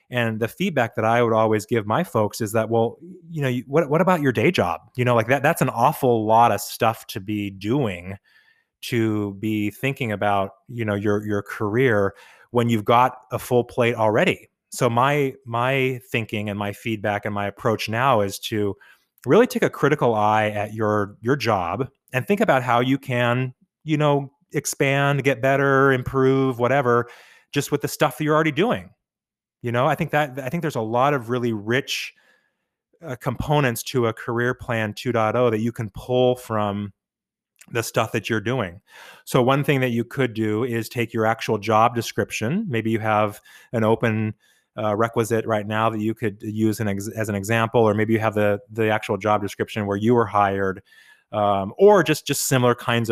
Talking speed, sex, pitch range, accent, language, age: 195 wpm, male, 110-130 Hz, American, English, 30-49